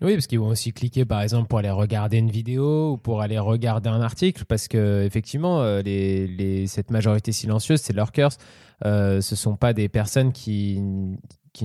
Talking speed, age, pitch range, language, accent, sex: 185 wpm, 20-39, 105-125 Hz, French, French, male